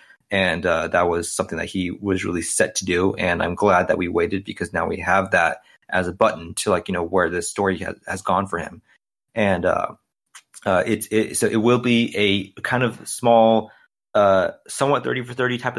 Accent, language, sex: American, English, male